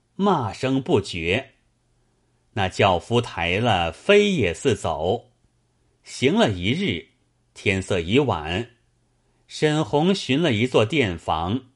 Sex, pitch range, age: male, 100-130 Hz, 30-49